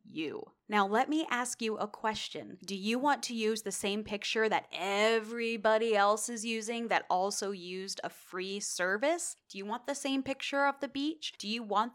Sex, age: female, 20-39